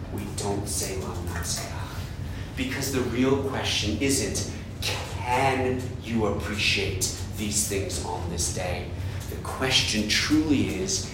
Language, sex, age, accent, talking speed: English, male, 40-59, American, 115 wpm